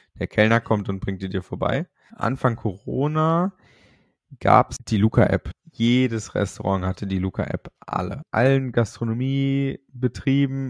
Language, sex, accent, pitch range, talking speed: German, male, German, 100-130 Hz, 125 wpm